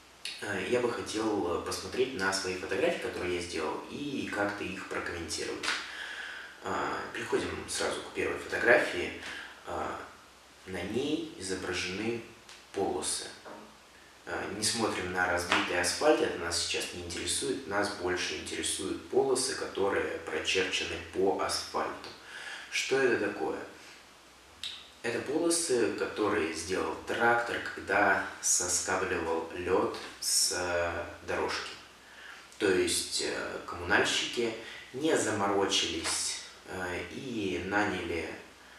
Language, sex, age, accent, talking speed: Russian, male, 20-39, native, 95 wpm